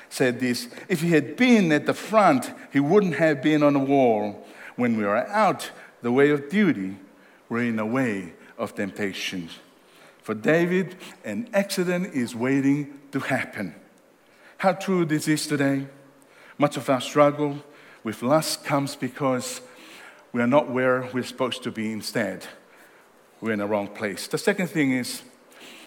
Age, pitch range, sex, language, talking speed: 60-79, 125-155 Hz, male, English, 160 wpm